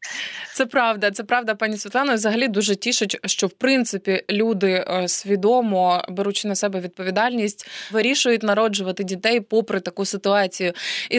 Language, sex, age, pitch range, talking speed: Ukrainian, female, 20-39, 200-240 Hz, 135 wpm